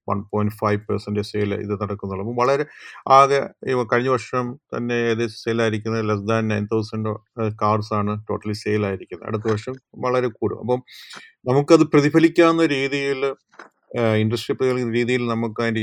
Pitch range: 110-120 Hz